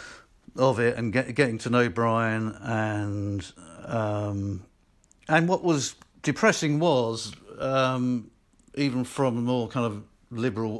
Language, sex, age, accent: English, male, 50-69, British